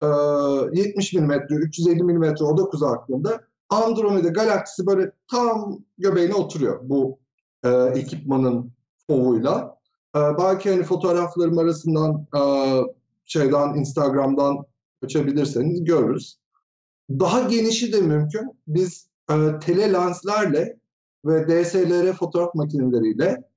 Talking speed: 100 wpm